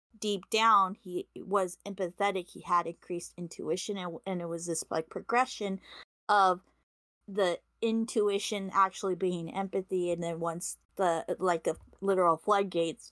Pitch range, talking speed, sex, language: 170-200 Hz, 135 wpm, female, English